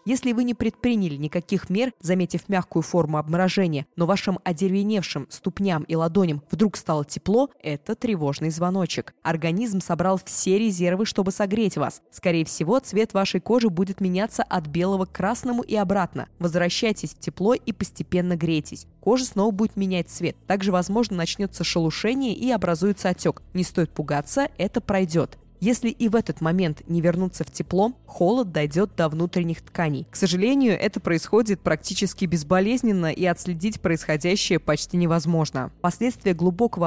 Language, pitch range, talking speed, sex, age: Russian, 165-205 Hz, 150 wpm, female, 20-39